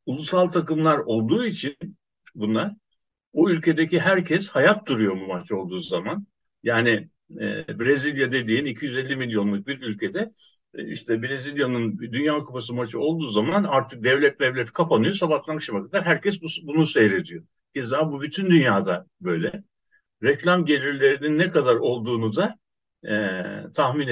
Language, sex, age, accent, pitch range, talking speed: Turkish, male, 60-79, native, 125-180 Hz, 130 wpm